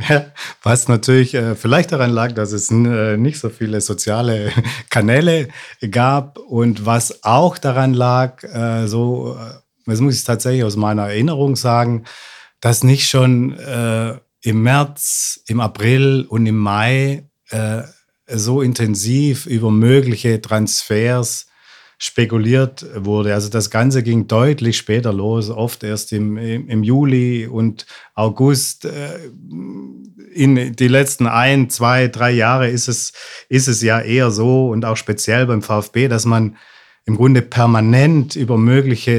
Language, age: German, 50-69